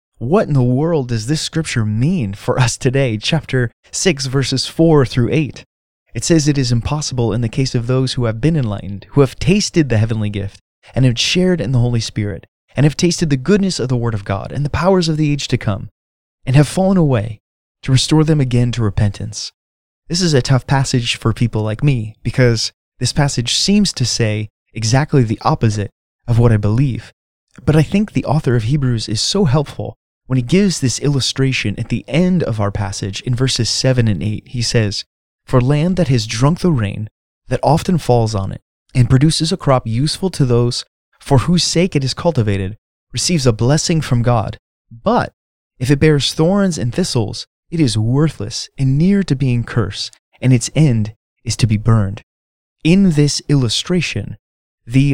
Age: 20-39